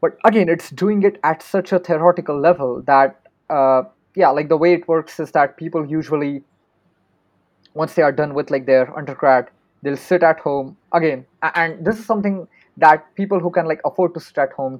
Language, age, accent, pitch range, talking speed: English, 20-39, Indian, 135-165 Hz, 200 wpm